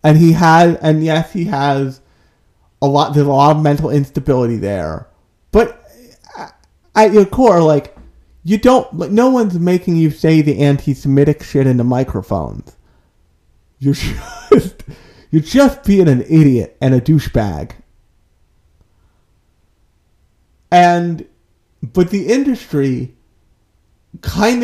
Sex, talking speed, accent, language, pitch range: male, 120 wpm, American, English, 120-170 Hz